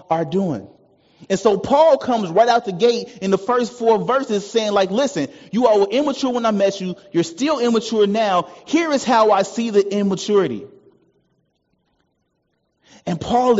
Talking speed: 170 wpm